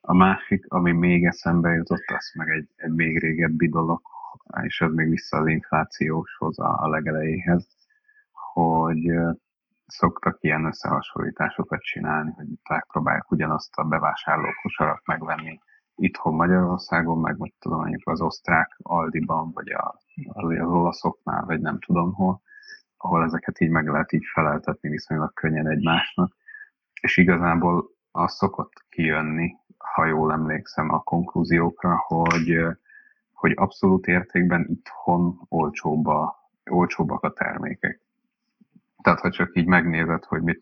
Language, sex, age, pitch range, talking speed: Hungarian, male, 30-49, 80-90 Hz, 125 wpm